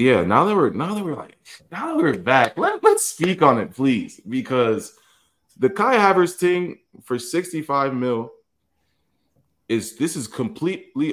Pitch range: 85-110 Hz